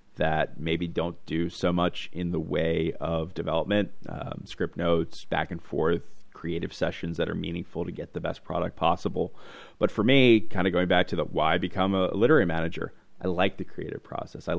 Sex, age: male, 30-49